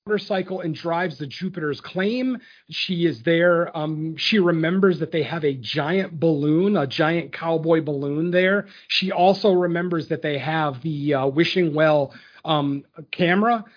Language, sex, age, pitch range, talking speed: English, male, 40-59, 160-200 Hz, 155 wpm